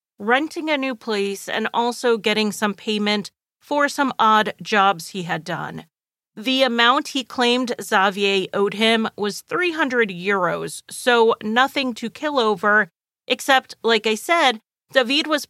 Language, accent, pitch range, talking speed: English, American, 195-255 Hz, 145 wpm